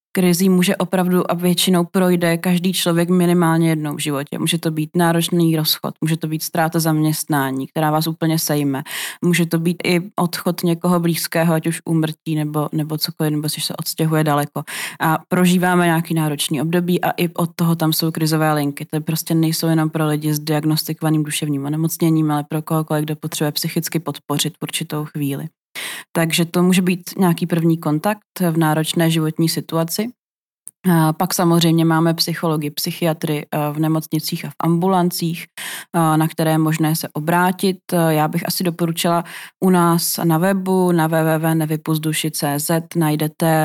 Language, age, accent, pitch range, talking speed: Czech, 20-39, native, 155-170 Hz, 160 wpm